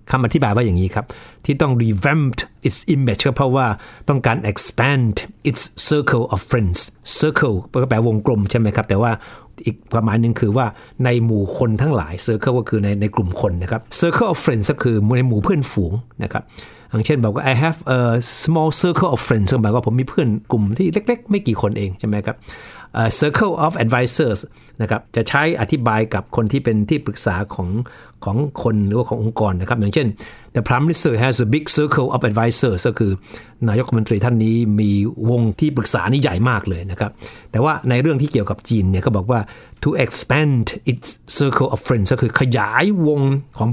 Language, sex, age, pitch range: Thai, male, 60-79, 110-135 Hz